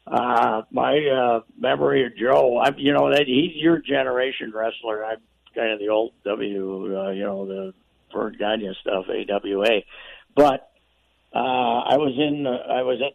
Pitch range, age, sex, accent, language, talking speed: 100-120 Hz, 60-79, male, American, English, 170 wpm